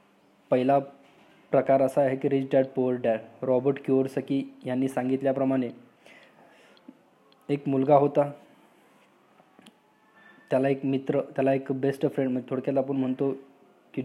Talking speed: 125 wpm